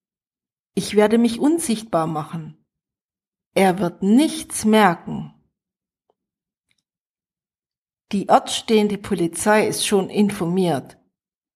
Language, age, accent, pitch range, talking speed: German, 50-69, German, 175-230 Hz, 80 wpm